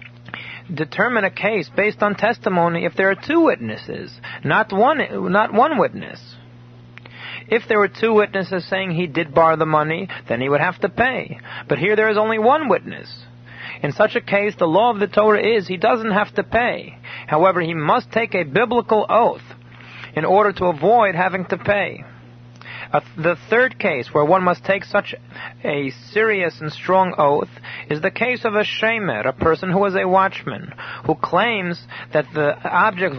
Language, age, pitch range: English, 40-59, 155-210 Hz